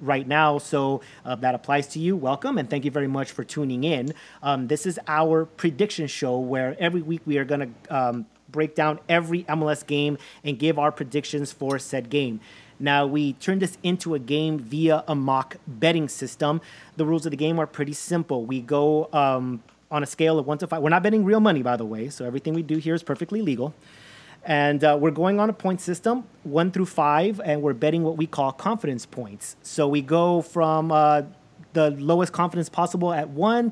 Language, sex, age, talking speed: English, male, 30-49, 210 wpm